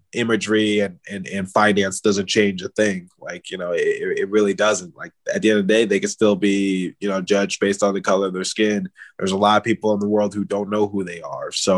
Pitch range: 100-110 Hz